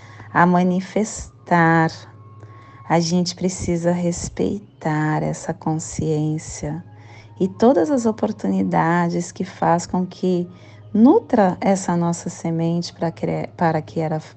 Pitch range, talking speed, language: 110-170 Hz, 100 wpm, Portuguese